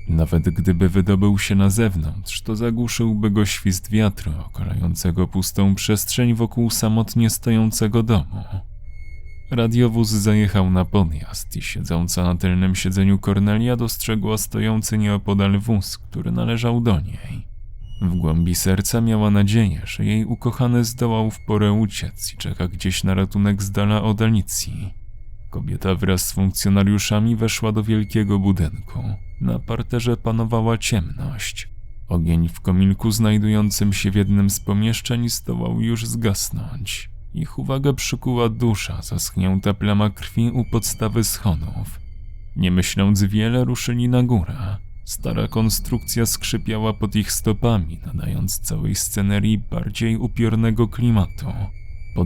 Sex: male